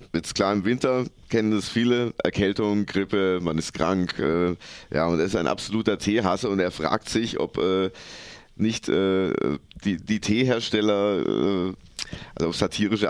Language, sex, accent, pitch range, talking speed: German, male, German, 95-120 Hz, 160 wpm